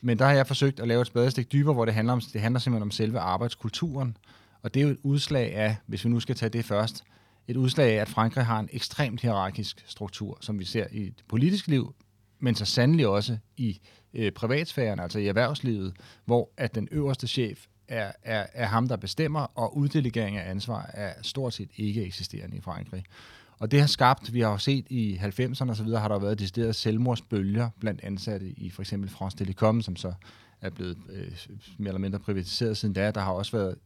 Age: 30-49